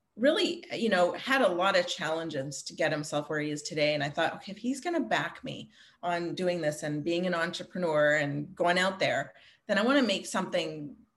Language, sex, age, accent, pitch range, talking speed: English, female, 30-49, American, 155-180 Hz, 225 wpm